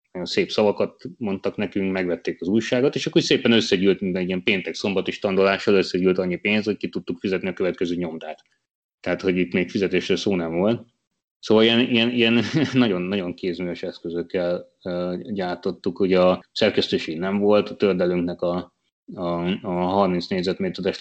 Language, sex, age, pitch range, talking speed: Hungarian, male, 30-49, 90-110 Hz, 155 wpm